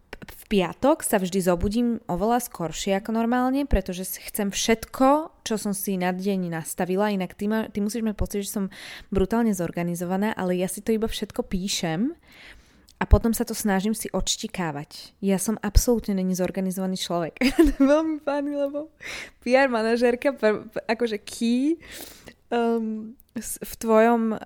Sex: female